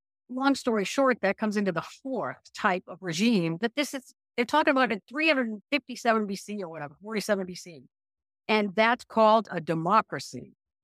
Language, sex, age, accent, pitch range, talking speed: English, female, 50-69, American, 150-220 Hz, 160 wpm